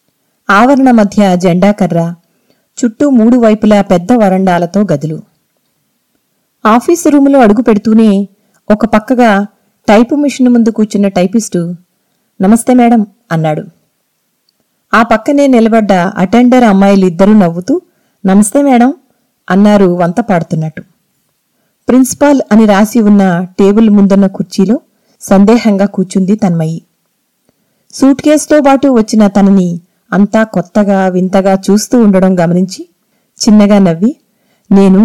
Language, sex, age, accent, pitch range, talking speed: Telugu, female, 30-49, native, 190-235 Hz, 95 wpm